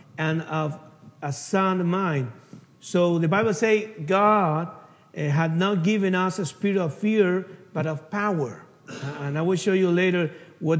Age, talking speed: 50-69, 165 wpm